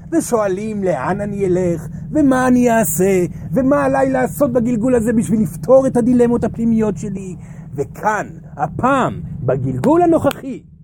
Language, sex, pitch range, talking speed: Hebrew, male, 170-265 Hz, 120 wpm